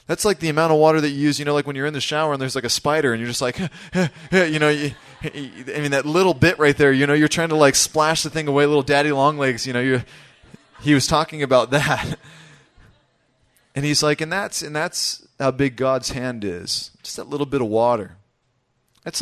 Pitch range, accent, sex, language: 120-145 Hz, American, male, English